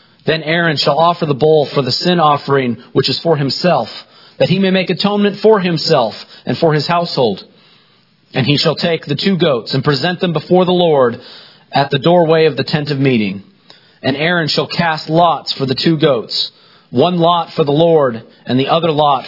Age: 40-59